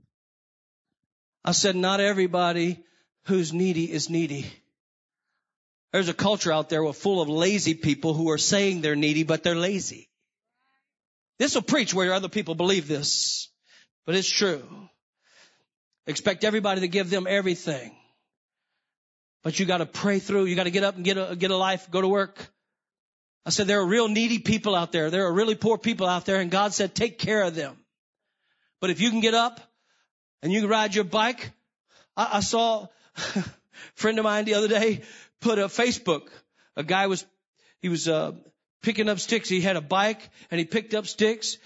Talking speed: 180 wpm